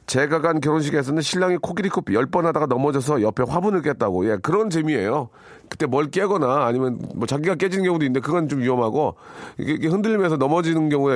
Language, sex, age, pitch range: Korean, male, 40-59, 120-165 Hz